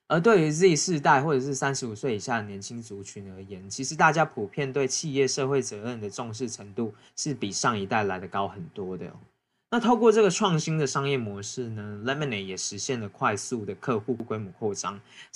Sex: male